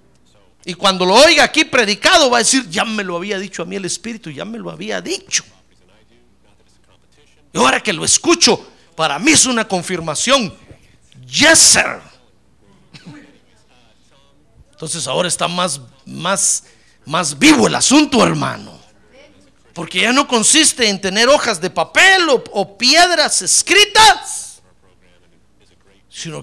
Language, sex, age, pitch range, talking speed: Spanish, male, 50-69, 190-310 Hz, 135 wpm